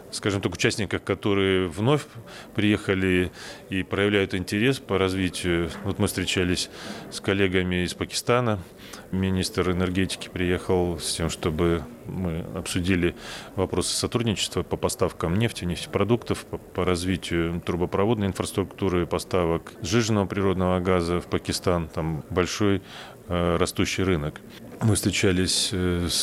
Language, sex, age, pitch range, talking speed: Russian, male, 30-49, 85-100 Hz, 115 wpm